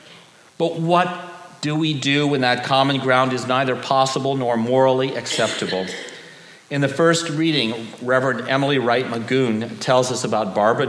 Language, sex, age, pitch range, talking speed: English, male, 40-59, 105-135 Hz, 150 wpm